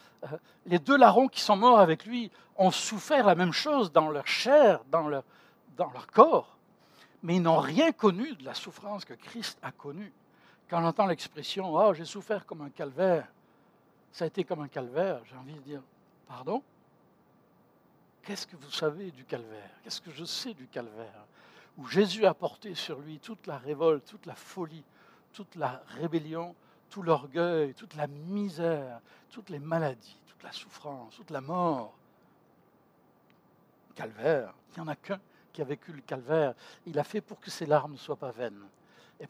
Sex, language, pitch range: male, French, 150-200 Hz